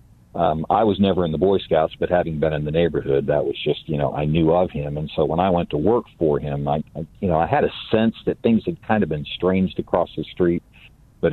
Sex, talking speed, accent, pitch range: male, 275 wpm, American, 75-95 Hz